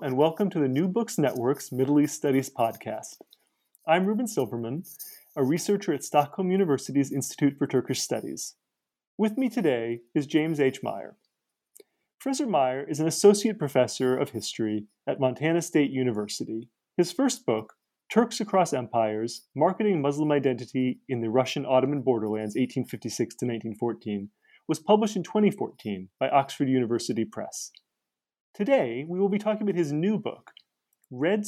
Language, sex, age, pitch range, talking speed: English, male, 30-49, 125-195 Hz, 155 wpm